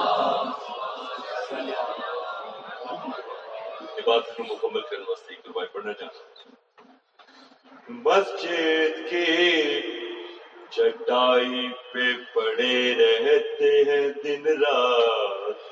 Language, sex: Urdu, male